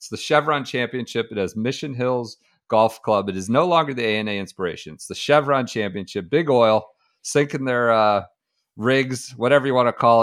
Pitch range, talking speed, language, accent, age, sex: 110-140 Hz, 190 wpm, English, American, 40-59, male